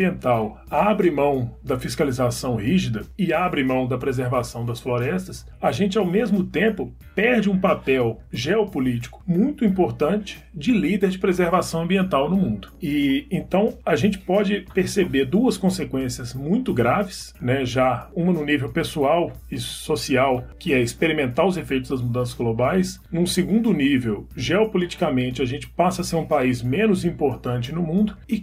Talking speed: 150 wpm